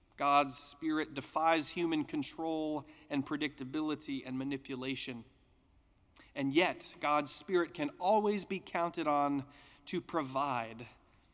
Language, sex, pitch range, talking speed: English, male, 130-190 Hz, 105 wpm